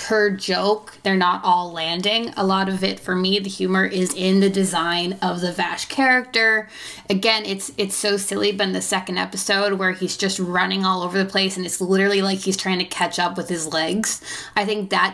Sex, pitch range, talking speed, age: female, 180-220 Hz, 220 wpm, 20-39